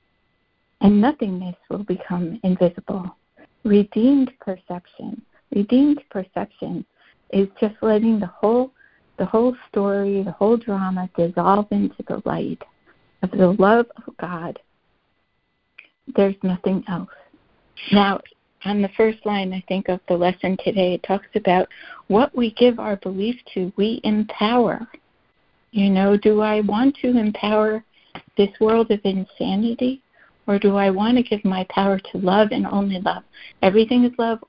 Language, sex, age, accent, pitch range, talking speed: English, female, 60-79, American, 190-220 Hz, 140 wpm